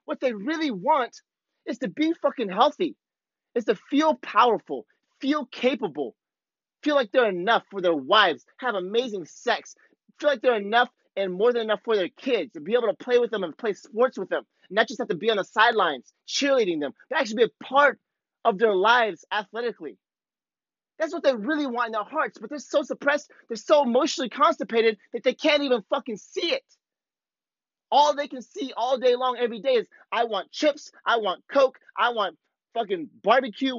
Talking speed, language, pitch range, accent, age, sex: 195 wpm, English, 200-290 Hz, American, 30-49, male